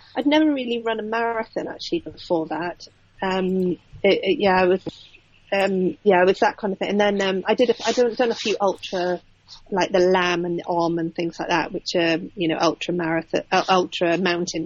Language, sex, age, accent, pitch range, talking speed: English, female, 40-59, British, 165-200 Hz, 225 wpm